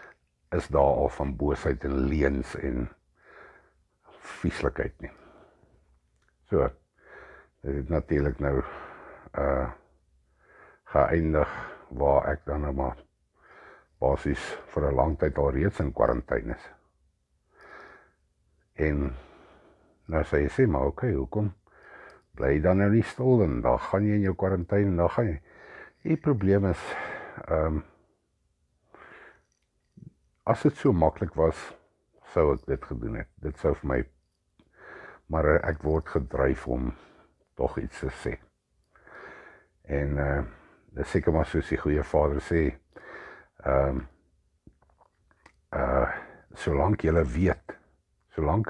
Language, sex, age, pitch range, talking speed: English, male, 60-79, 70-85 Hz, 115 wpm